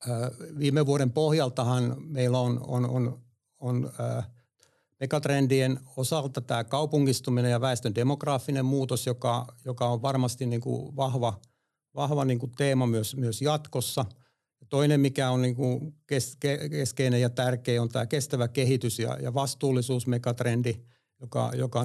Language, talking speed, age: Finnish, 135 wpm, 60-79